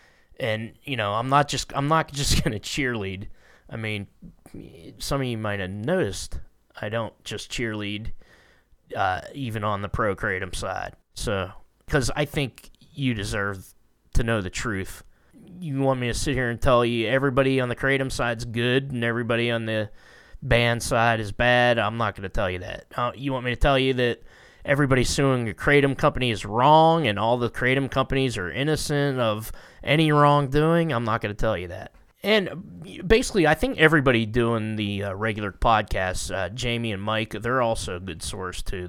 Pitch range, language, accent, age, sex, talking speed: 110-135 Hz, English, American, 20-39, male, 190 wpm